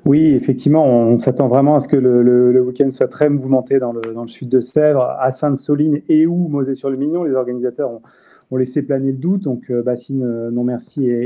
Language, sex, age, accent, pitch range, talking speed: French, male, 30-49, French, 125-150 Hz, 225 wpm